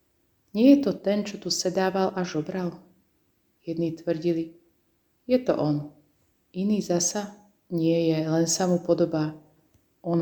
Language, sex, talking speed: Slovak, female, 135 wpm